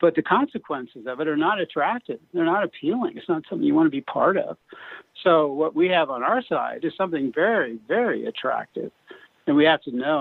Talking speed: 215 wpm